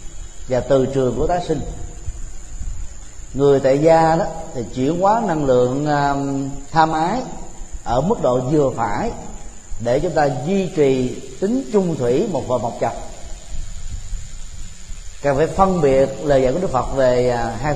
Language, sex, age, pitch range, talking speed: Vietnamese, male, 30-49, 115-150 Hz, 150 wpm